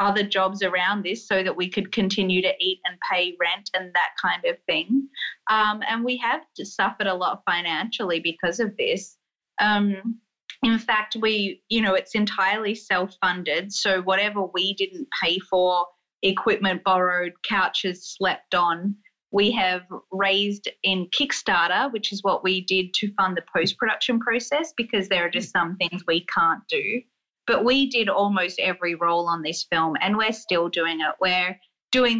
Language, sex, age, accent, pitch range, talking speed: English, female, 20-39, Australian, 180-215 Hz, 170 wpm